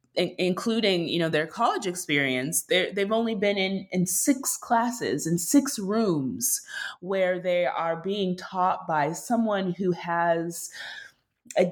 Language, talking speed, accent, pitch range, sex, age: English, 135 wpm, American, 150-190 Hz, female, 20-39